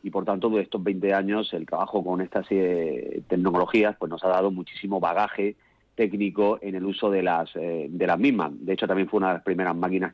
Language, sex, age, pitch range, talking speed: Spanish, male, 30-49, 95-105 Hz, 225 wpm